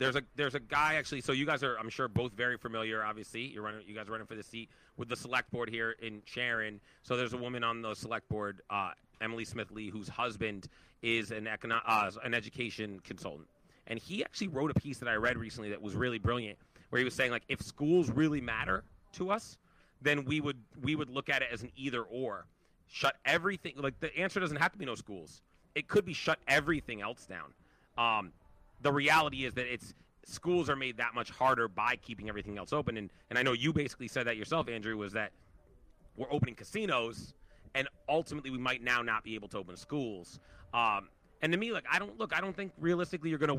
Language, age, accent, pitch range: English, 30-49, American, 110-145 Hz